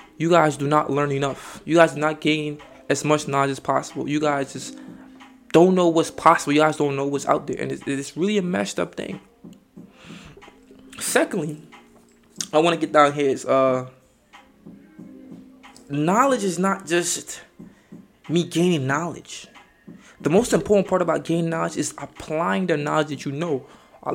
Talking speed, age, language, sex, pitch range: 170 wpm, 20-39, English, male, 140-195 Hz